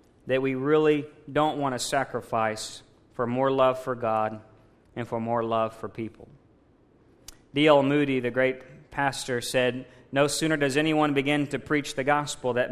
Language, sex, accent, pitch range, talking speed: English, male, American, 120-150 Hz, 160 wpm